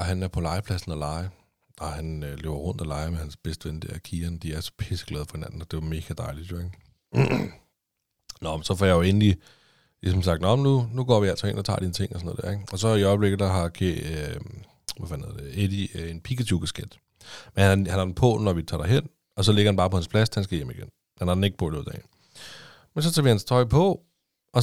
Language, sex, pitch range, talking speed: Danish, male, 85-120 Hz, 275 wpm